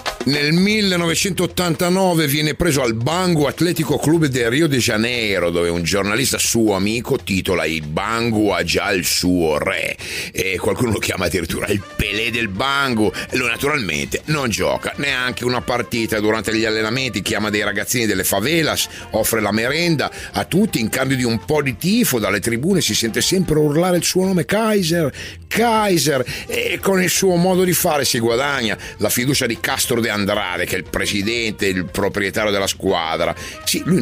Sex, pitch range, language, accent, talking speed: male, 100-155 Hz, Italian, native, 175 wpm